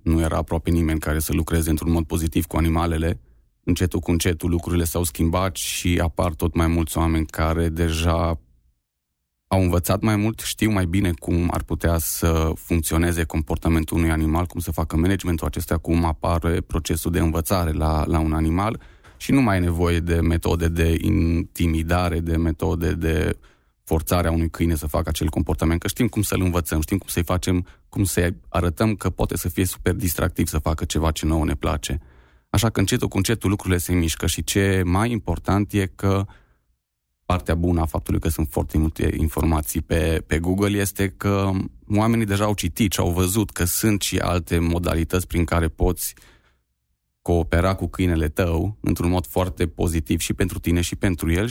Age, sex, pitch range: 20-39, male, 80-95 Hz